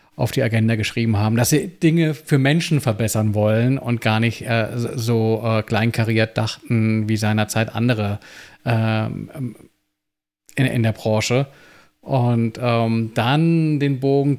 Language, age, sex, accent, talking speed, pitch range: German, 40-59, male, German, 140 wpm, 110-130 Hz